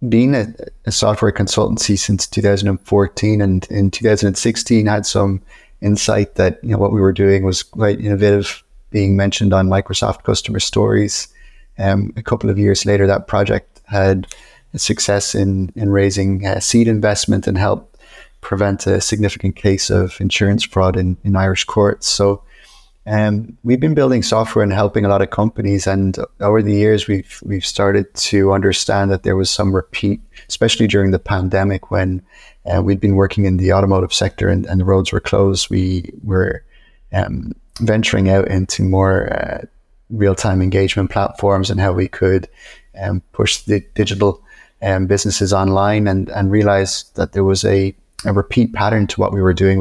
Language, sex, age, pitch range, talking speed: German, male, 30-49, 95-105 Hz, 170 wpm